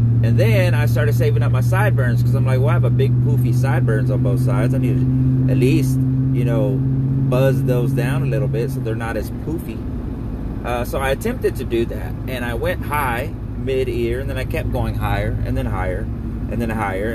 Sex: male